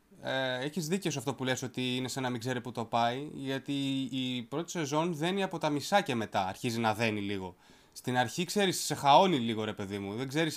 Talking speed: 235 wpm